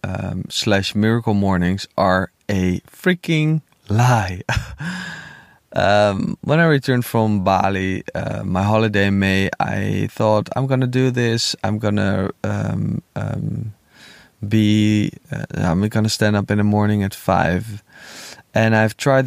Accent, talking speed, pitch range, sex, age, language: Dutch, 135 wpm, 100-130 Hz, male, 20-39, English